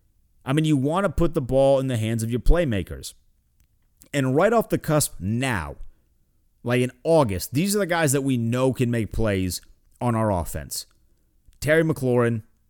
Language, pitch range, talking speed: English, 95-140 Hz, 180 wpm